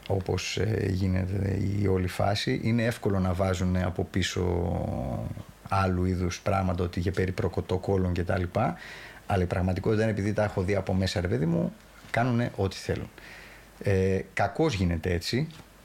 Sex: male